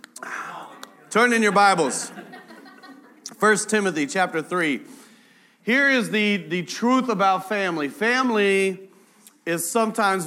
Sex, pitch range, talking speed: male, 130-210 Hz, 105 wpm